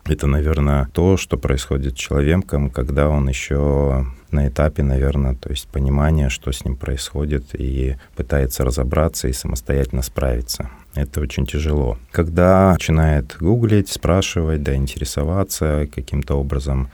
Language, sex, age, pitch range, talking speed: Russian, male, 30-49, 70-85 Hz, 130 wpm